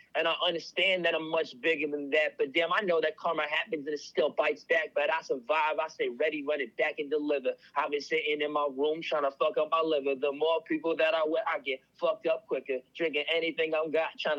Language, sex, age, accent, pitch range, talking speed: English, male, 30-49, American, 150-170 Hz, 250 wpm